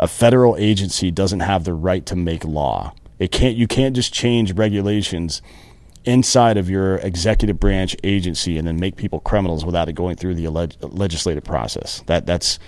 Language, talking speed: English, 175 wpm